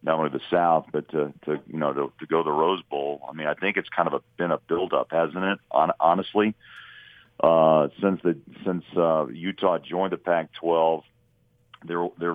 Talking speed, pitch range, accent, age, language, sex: 205 wpm, 75-85 Hz, American, 40-59, English, male